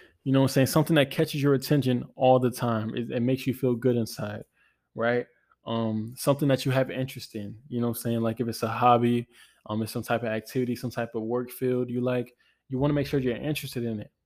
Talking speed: 255 wpm